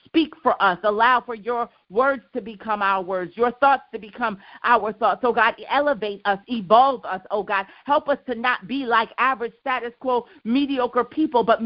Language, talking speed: English, 190 wpm